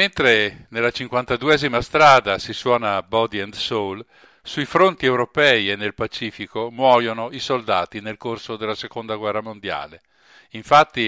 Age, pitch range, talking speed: 50-69, 110-140 Hz, 135 wpm